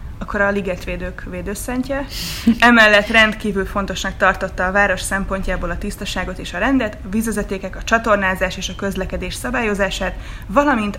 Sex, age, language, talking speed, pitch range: female, 20-39, Hungarian, 135 wpm, 185-220 Hz